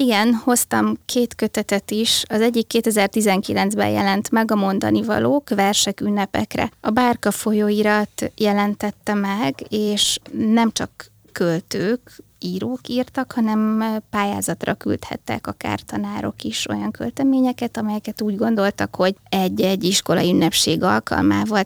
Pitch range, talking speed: 185-220 Hz, 115 wpm